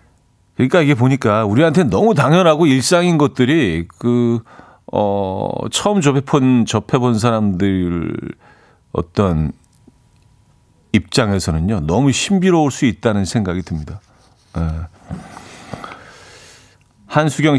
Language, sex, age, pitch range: Korean, male, 40-59, 100-150 Hz